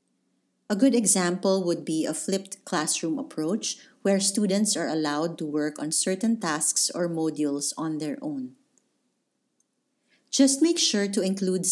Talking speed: 145 wpm